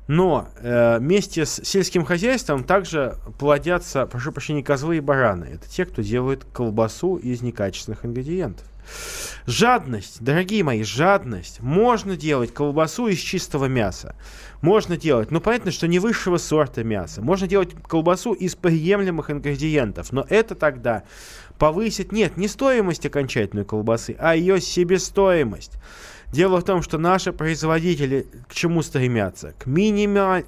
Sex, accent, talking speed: male, native, 140 wpm